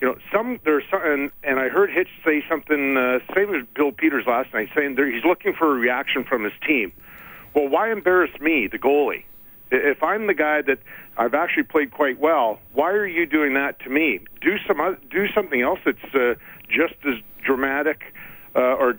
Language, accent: English, American